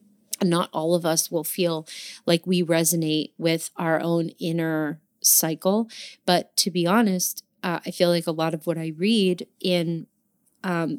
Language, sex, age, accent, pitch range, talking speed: English, female, 30-49, American, 165-190 Hz, 165 wpm